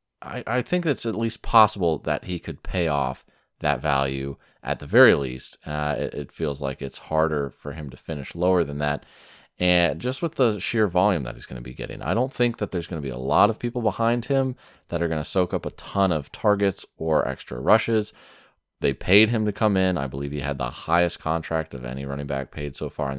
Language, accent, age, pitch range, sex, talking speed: English, American, 30-49, 75-110 Hz, male, 240 wpm